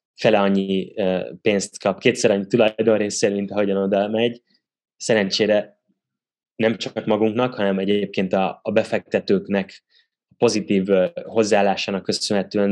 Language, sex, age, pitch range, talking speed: Hungarian, male, 20-39, 95-110 Hz, 110 wpm